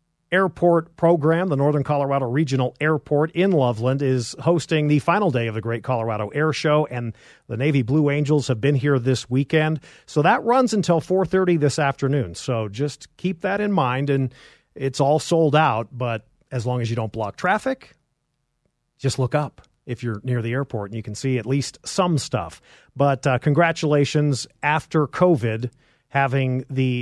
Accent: American